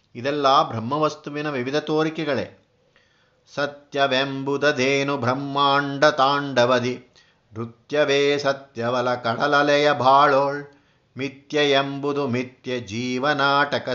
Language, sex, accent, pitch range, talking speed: Kannada, male, native, 125-150 Hz, 65 wpm